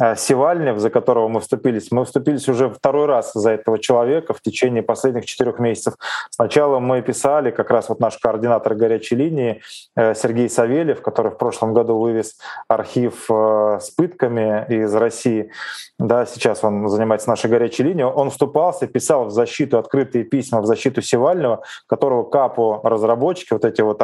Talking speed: 155 wpm